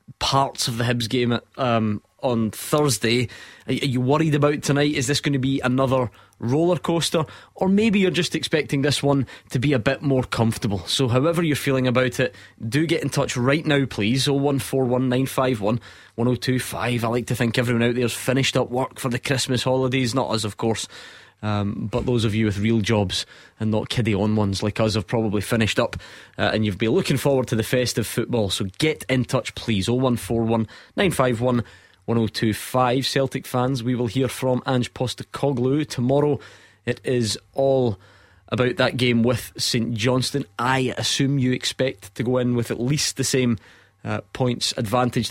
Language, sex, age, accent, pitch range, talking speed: English, male, 20-39, British, 115-135 Hz, 175 wpm